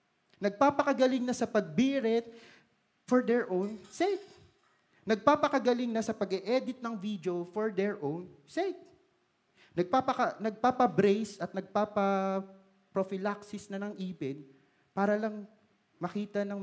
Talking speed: 105 wpm